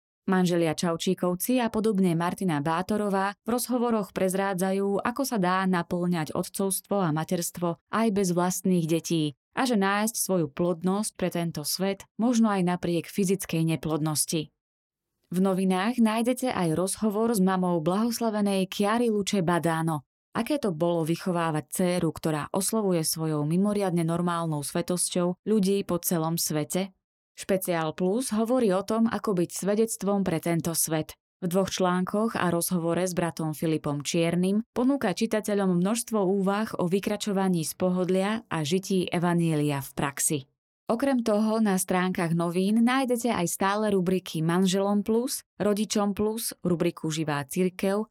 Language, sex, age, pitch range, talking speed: Slovak, female, 20-39, 170-210 Hz, 135 wpm